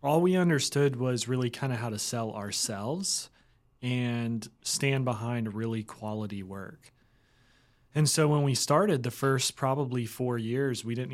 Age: 30-49